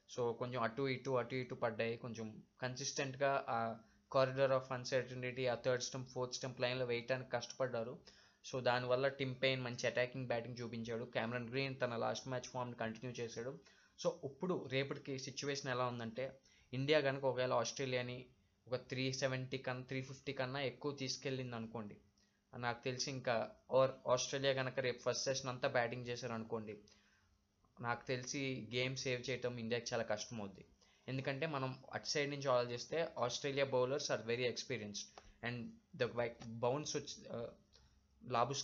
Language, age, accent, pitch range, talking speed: Telugu, 20-39, native, 120-135 Hz, 140 wpm